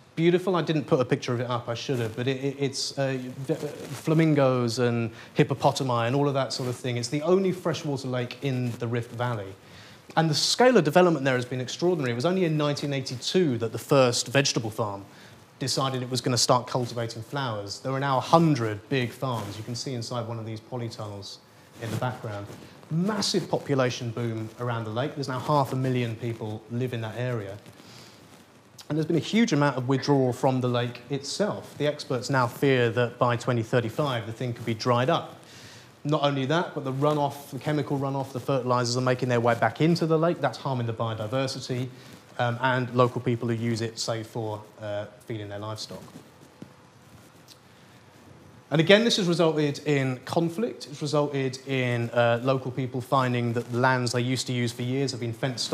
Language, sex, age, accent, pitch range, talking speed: English, male, 30-49, British, 120-145 Hz, 195 wpm